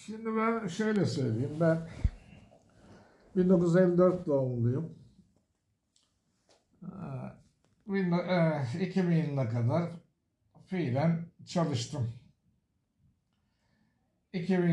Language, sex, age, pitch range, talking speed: Turkish, male, 60-79, 140-185 Hz, 55 wpm